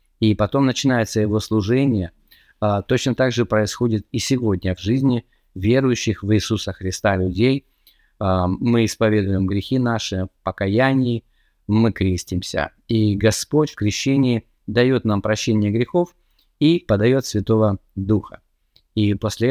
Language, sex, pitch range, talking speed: Russian, male, 100-120 Hz, 120 wpm